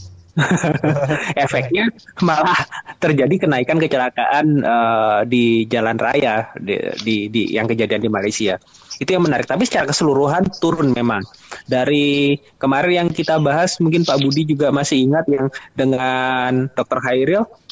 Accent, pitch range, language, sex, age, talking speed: native, 120-145 Hz, Indonesian, male, 20-39, 130 wpm